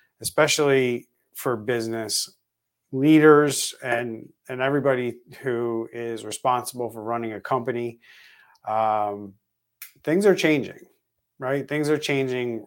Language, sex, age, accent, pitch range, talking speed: English, male, 30-49, American, 110-135 Hz, 105 wpm